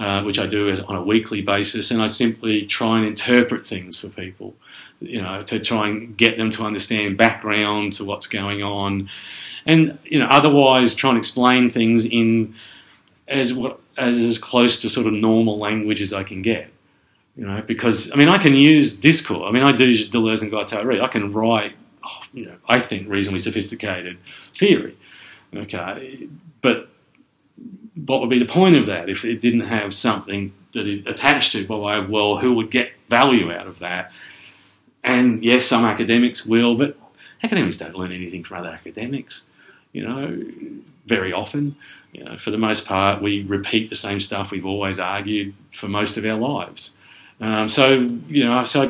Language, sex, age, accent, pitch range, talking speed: English, male, 40-59, Australian, 100-125 Hz, 180 wpm